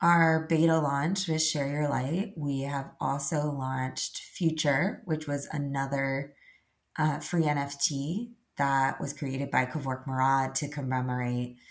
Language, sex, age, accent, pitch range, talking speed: English, female, 20-39, American, 130-160 Hz, 135 wpm